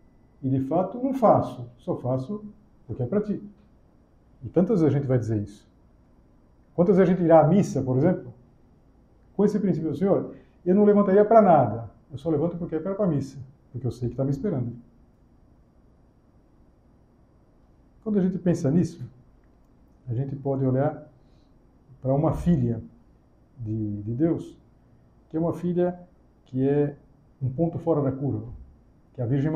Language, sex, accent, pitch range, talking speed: Portuguese, male, Brazilian, 125-165 Hz, 170 wpm